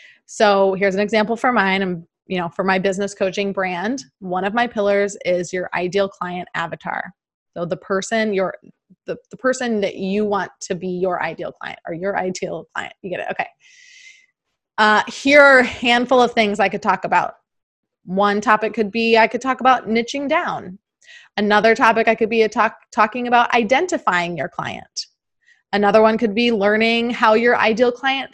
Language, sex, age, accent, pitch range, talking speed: English, female, 20-39, American, 195-235 Hz, 185 wpm